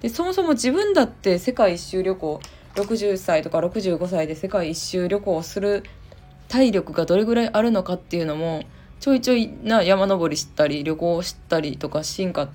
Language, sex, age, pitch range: Japanese, female, 20-39, 165-235 Hz